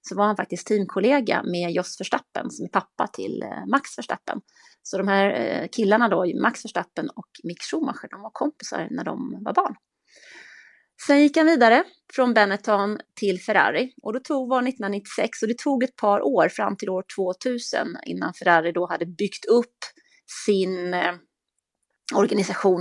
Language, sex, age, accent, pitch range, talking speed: Swedish, female, 30-49, native, 180-245 Hz, 165 wpm